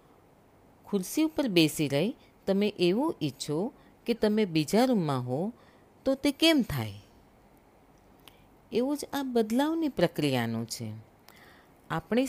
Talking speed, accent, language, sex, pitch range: 110 wpm, native, Gujarati, female, 135-230 Hz